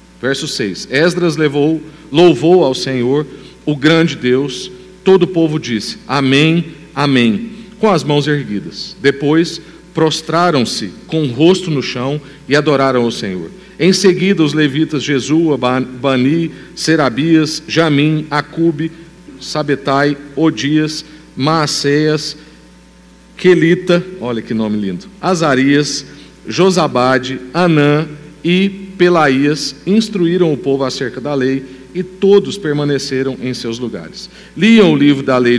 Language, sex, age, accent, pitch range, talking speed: Portuguese, male, 50-69, Brazilian, 130-165 Hz, 120 wpm